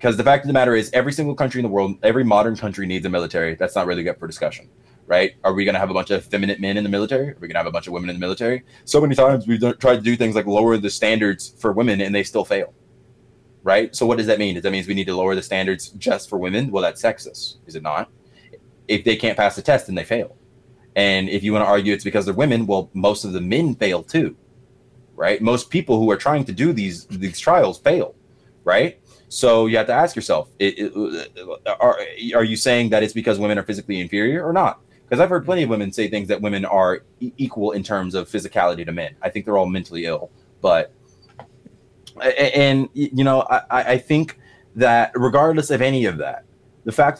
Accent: American